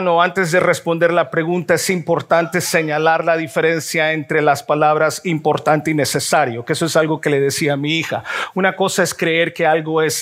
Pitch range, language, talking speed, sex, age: 160-195 Hz, Spanish, 200 wpm, male, 50-69